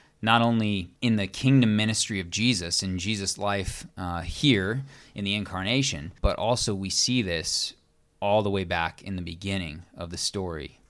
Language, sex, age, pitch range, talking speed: English, male, 30-49, 90-105 Hz, 170 wpm